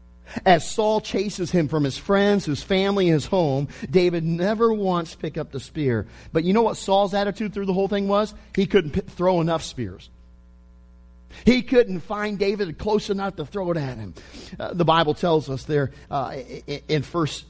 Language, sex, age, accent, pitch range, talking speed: English, male, 40-59, American, 150-215 Hz, 190 wpm